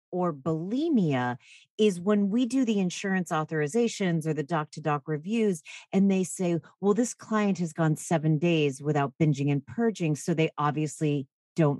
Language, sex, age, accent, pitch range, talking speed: English, female, 40-59, American, 155-225 Hz, 160 wpm